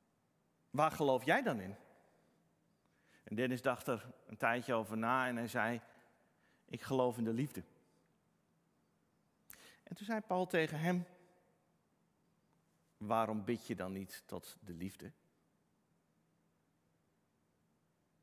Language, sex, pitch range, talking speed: Dutch, male, 120-185 Hz, 115 wpm